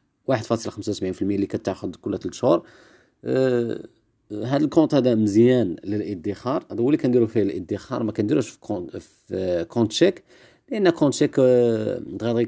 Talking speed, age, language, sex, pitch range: 155 wpm, 40-59, Arabic, male, 105-135 Hz